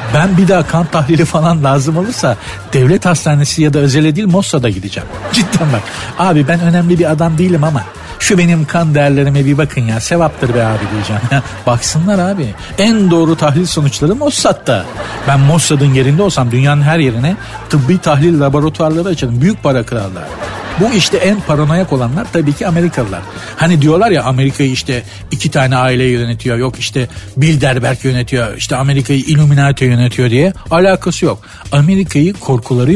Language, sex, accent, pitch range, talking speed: Turkish, male, native, 125-170 Hz, 160 wpm